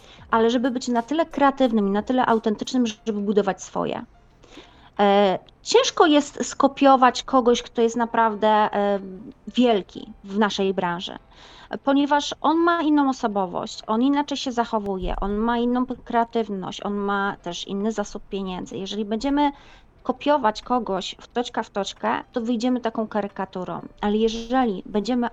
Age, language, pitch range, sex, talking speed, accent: 30-49, Polish, 200-250 Hz, female, 135 wpm, native